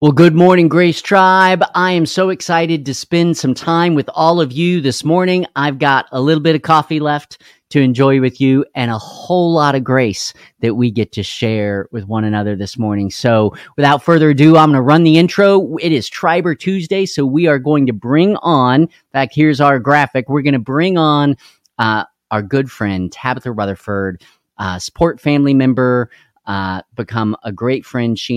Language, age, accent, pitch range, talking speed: English, 40-59, American, 100-150 Hz, 195 wpm